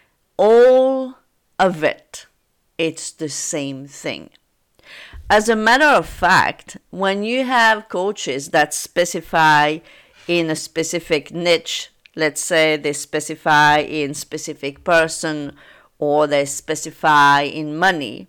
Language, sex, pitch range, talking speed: English, female, 155-200 Hz, 110 wpm